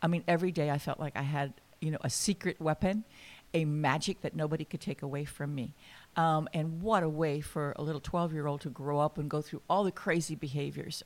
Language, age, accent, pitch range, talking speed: English, 60-79, American, 145-175 Hz, 230 wpm